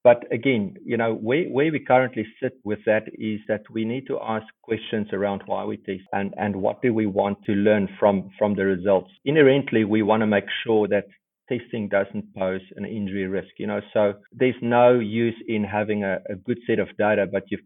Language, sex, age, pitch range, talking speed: English, male, 50-69, 100-120 Hz, 215 wpm